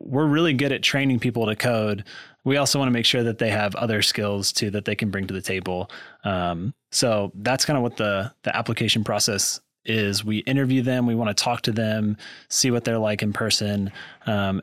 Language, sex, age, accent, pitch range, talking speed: English, male, 20-39, American, 105-120 Hz, 220 wpm